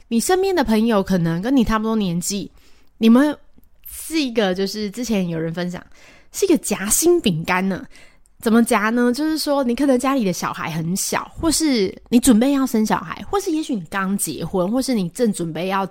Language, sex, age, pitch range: Chinese, female, 20-39, 180-240 Hz